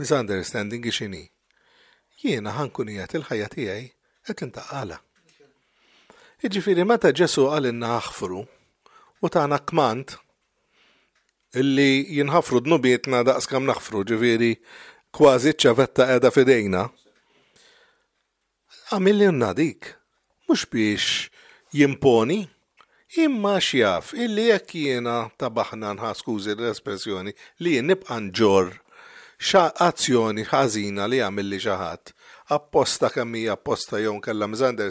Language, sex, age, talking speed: English, male, 50-69, 75 wpm